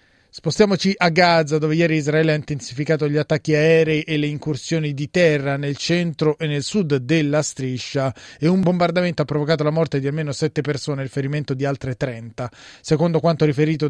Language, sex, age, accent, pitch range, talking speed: Italian, male, 30-49, native, 150-180 Hz, 185 wpm